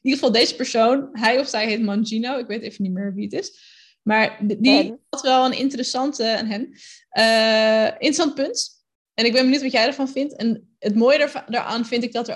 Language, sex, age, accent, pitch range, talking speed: Dutch, female, 20-39, Dutch, 200-235 Hz, 205 wpm